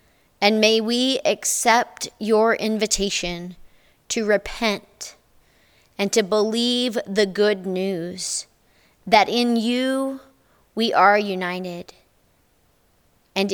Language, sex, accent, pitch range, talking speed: English, female, American, 190-225 Hz, 95 wpm